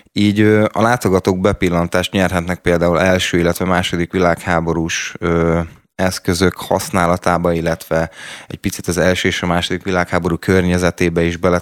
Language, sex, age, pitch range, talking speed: Hungarian, male, 20-39, 85-95 Hz, 125 wpm